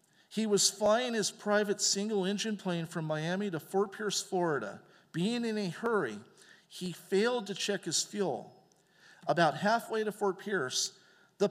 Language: English